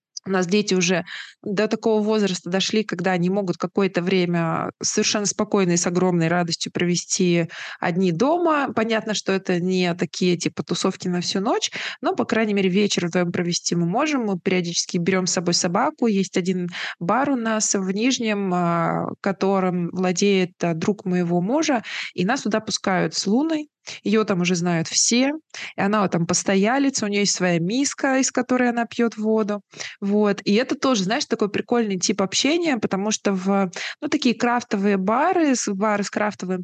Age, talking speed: 20-39, 165 wpm